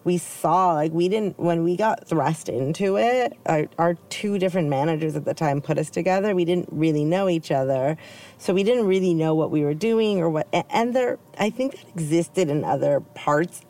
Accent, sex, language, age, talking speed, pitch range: American, female, English, 30-49, 205 wpm, 145-180 Hz